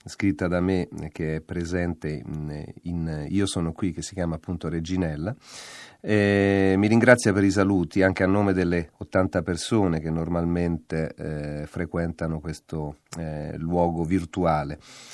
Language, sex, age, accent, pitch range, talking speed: Italian, male, 40-59, native, 85-105 Hz, 145 wpm